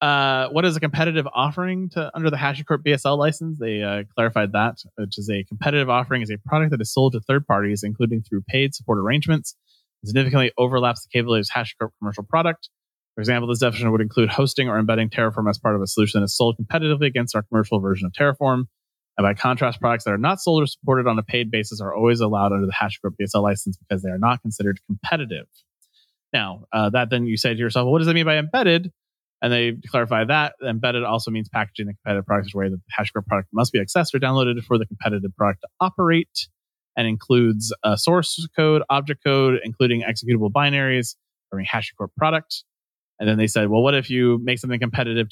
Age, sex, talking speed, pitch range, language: 30-49, male, 215 wpm, 110-145 Hz, English